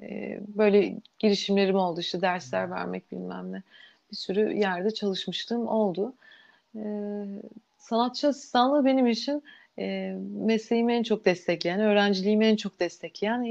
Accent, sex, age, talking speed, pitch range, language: native, female, 30-49, 110 wpm, 175-225 Hz, Turkish